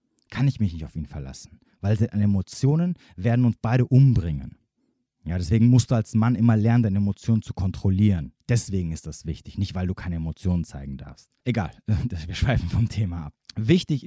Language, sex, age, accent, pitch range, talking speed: German, male, 30-49, German, 100-130 Hz, 190 wpm